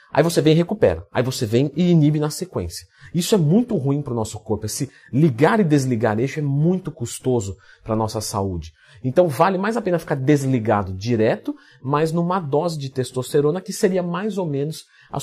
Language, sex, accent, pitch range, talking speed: Portuguese, male, Brazilian, 115-190 Hz, 200 wpm